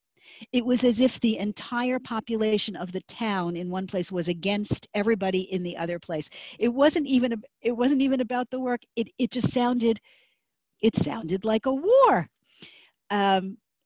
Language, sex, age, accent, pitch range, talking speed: English, female, 50-69, American, 180-240 Hz, 175 wpm